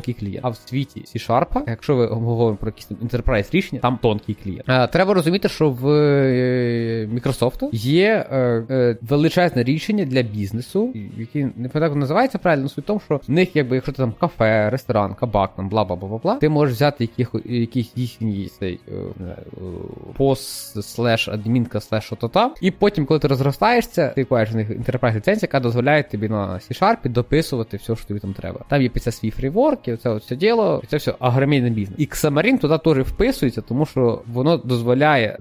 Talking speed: 170 wpm